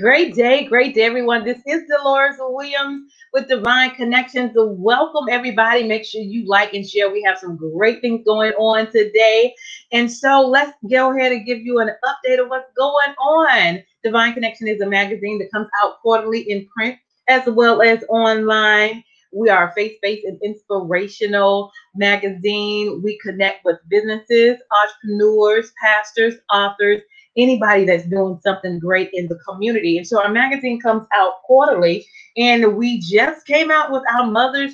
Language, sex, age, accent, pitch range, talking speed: English, female, 30-49, American, 195-245 Hz, 160 wpm